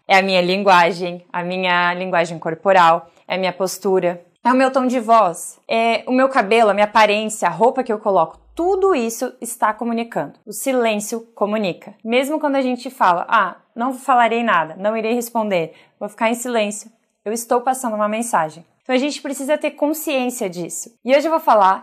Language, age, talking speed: Portuguese, 20-39, 190 wpm